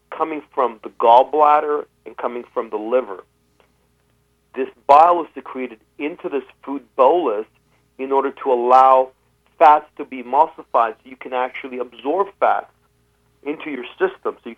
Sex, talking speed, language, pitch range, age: male, 150 wpm, English, 125-175 Hz, 40-59